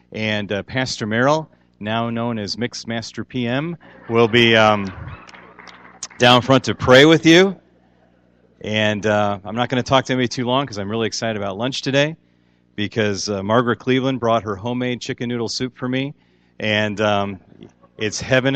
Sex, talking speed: male, 170 wpm